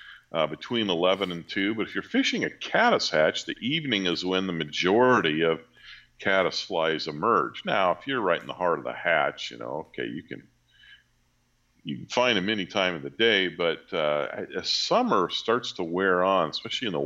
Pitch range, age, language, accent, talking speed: 90-125 Hz, 50-69, English, American, 200 wpm